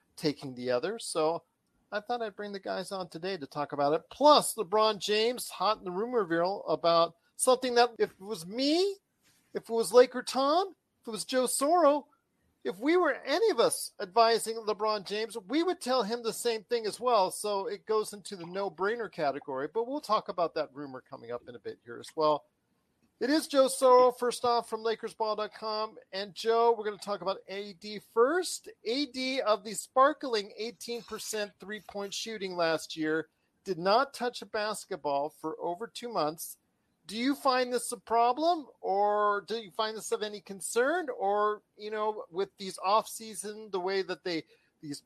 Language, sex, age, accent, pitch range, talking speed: English, male, 40-59, American, 185-240 Hz, 185 wpm